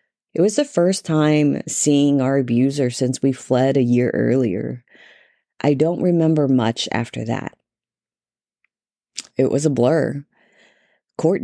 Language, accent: English, American